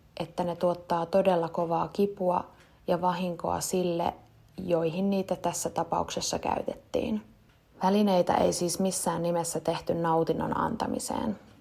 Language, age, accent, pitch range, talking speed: Finnish, 20-39, native, 165-185 Hz, 115 wpm